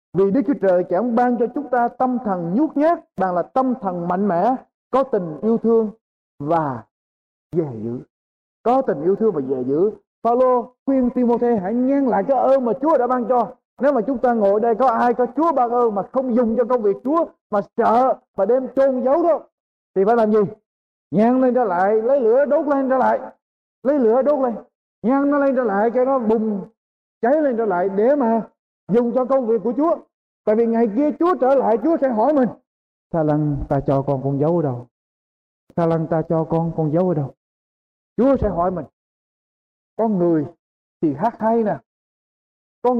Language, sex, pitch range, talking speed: Vietnamese, male, 180-260 Hz, 210 wpm